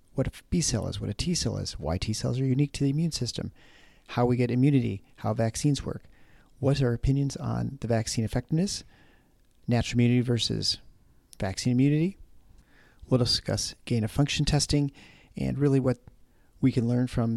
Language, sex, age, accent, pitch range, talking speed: English, male, 40-59, American, 105-130 Hz, 180 wpm